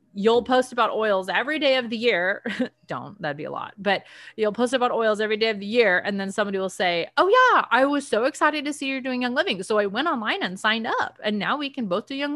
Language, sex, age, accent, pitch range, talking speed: English, female, 30-49, American, 180-255 Hz, 265 wpm